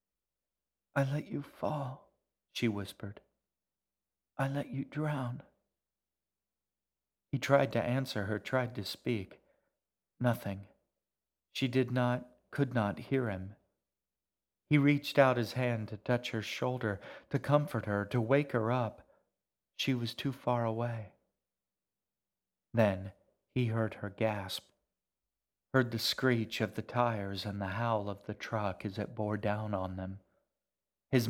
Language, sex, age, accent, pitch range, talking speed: English, male, 40-59, American, 100-125 Hz, 135 wpm